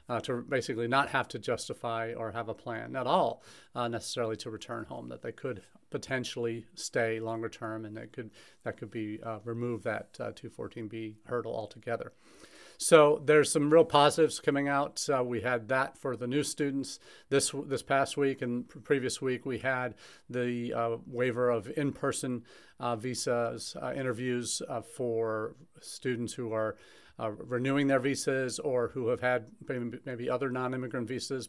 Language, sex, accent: English, male, American